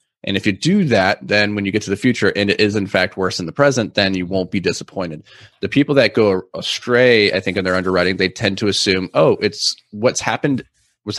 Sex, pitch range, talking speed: male, 95-115 Hz, 240 wpm